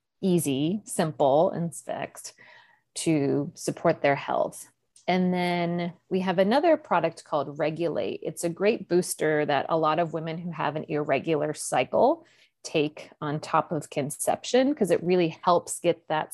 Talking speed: 150 wpm